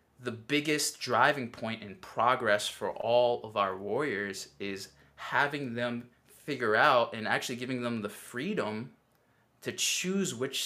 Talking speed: 140 wpm